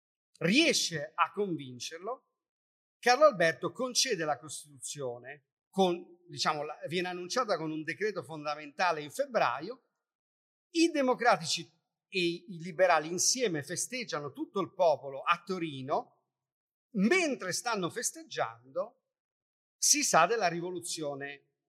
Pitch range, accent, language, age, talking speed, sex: 145-215 Hz, native, Italian, 50-69, 95 wpm, male